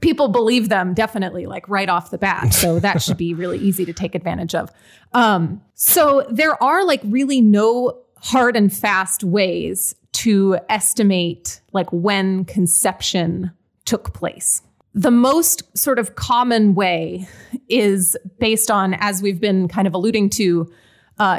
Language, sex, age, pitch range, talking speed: English, female, 30-49, 185-230 Hz, 150 wpm